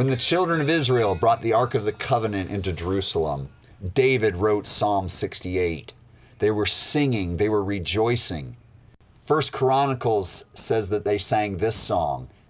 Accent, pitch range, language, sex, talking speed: American, 100-125 Hz, English, male, 150 wpm